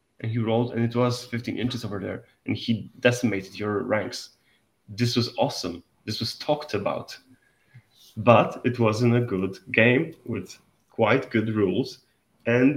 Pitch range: 110-135 Hz